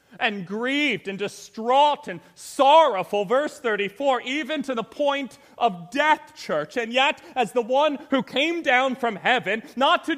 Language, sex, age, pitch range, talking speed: English, male, 30-49, 240-305 Hz, 160 wpm